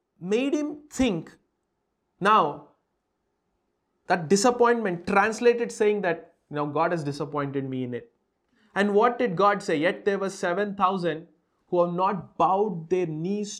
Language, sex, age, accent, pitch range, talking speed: English, male, 30-49, Indian, 165-225 Hz, 140 wpm